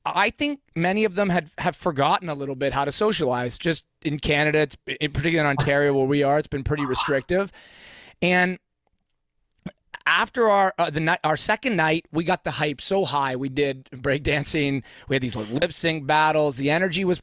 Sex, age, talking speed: male, 30-49, 200 wpm